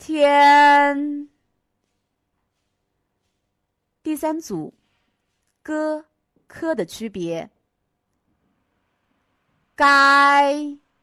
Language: Chinese